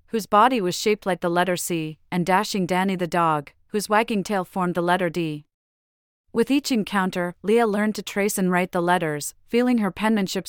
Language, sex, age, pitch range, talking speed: English, female, 40-59, 170-210 Hz, 195 wpm